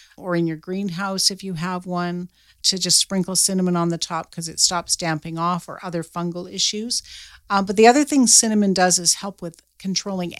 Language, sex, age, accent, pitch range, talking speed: English, female, 50-69, American, 165-190 Hz, 200 wpm